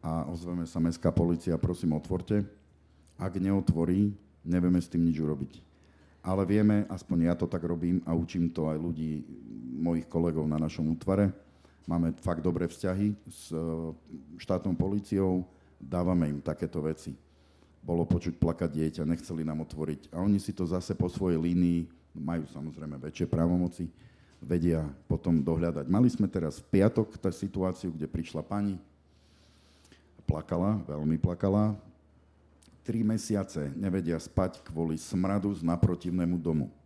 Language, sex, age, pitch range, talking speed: Slovak, male, 50-69, 80-95 Hz, 140 wpm